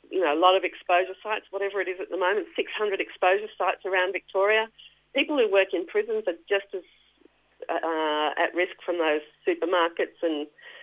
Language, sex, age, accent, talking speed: English, female, 40-59, Australian, 185 wpm